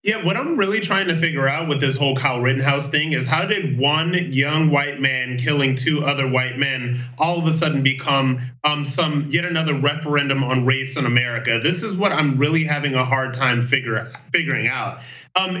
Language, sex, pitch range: English, male, 135-170 Hz